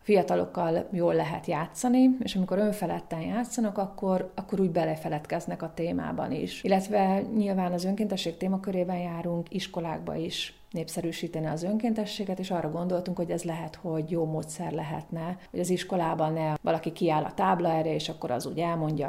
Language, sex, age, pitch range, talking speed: Hungarian, female, 30-49, 160-195 Hz, 155 wpm